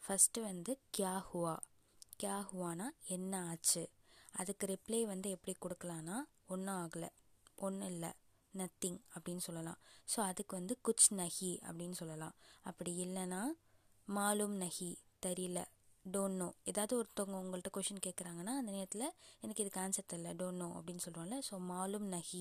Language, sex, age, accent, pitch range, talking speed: Tamil, female, 20-39, native, 180-220 Hz, 125 wpm